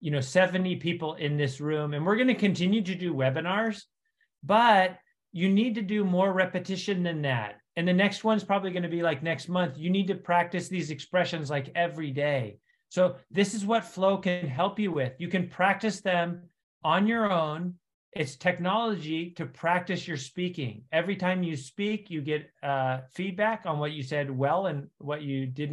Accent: American